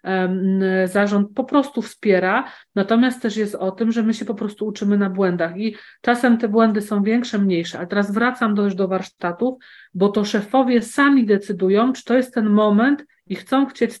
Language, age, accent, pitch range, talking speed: Polish, 40-59, native, 195-230 Hz, 190 wpm